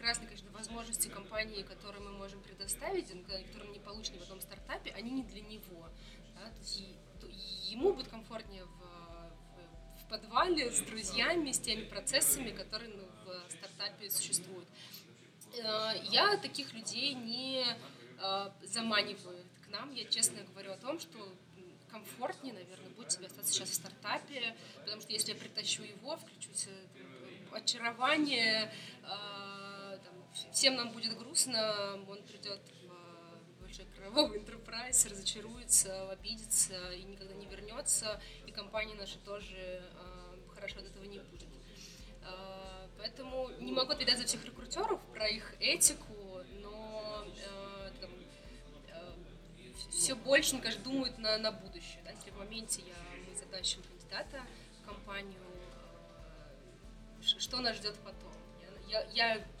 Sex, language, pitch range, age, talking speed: female, Russian, 185-225 Hz, 20-39, 120 wpm